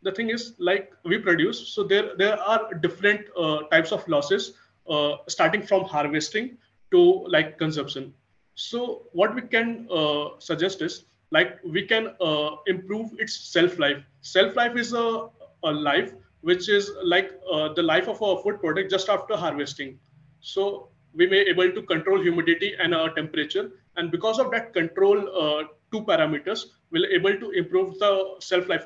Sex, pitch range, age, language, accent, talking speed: male, 160-210 Hz, 30-49, Telugu, native, 165 wpm